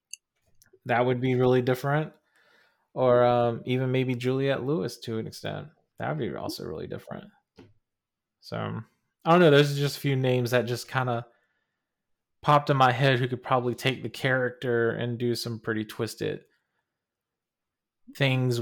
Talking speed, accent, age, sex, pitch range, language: 160 wpm, American, 20-39, male, 115-135 Hz, English